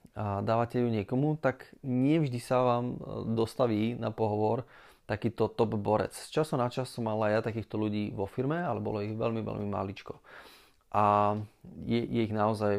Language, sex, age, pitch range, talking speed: Slovak, male, 30-49, 105-120 Hz, 170 wpm